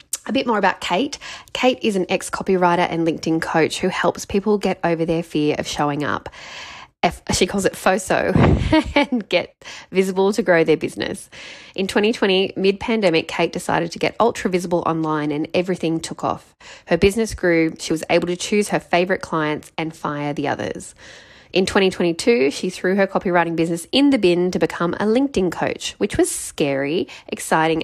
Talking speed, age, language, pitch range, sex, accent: 170 wpm, 10-29, English, 165-210 Hz, female, Australian